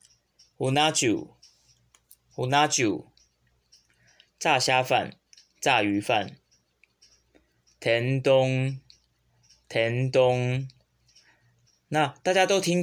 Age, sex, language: 20-39, male, Chinese